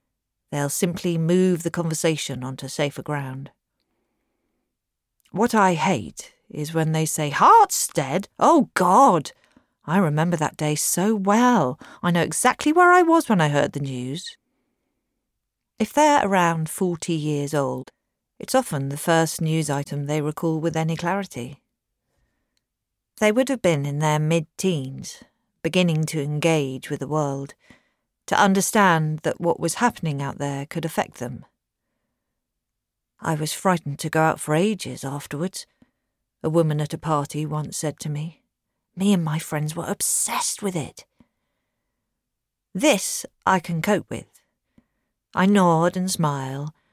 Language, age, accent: English, 40-59, British